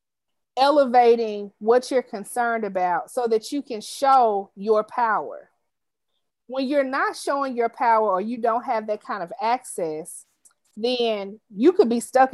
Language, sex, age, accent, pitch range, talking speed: English, female, 40-59, American, 220-275 Hz, 150 wpm